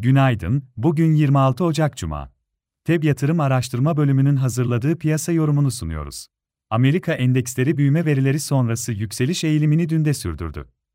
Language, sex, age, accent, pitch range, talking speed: Turkish, male, 40-59, native, 125-150 Hz, 120 wpm